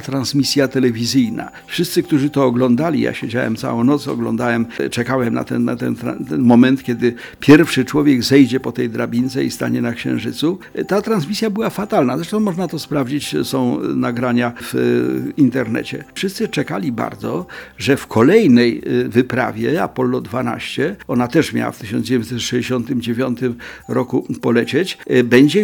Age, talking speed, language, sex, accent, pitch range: 50-69, 135 wpm, Polish, male, native, 125-175 Hz